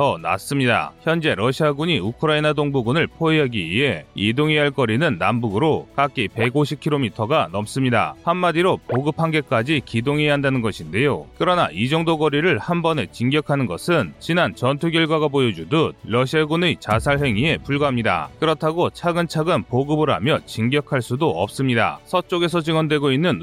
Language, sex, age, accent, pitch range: Korean, male, 30-49, native, 125-155 Hz